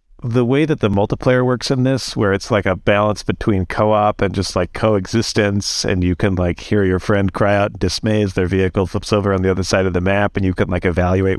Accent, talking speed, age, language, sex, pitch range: American, 250 wpm, 40-59, English, male, 95-115 Hz